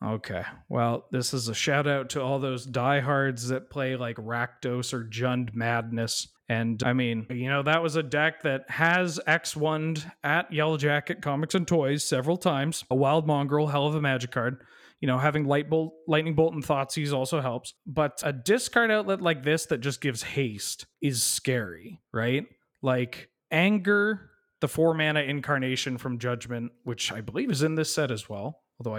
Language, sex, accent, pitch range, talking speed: English, male, American, 125-160 Hz, 180 wpm